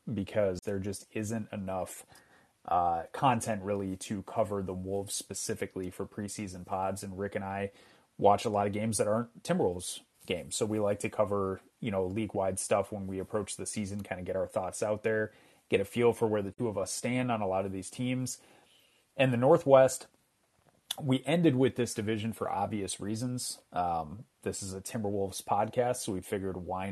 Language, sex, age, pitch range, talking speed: English, male, 30-49, 95-120 Hz, 195 wpm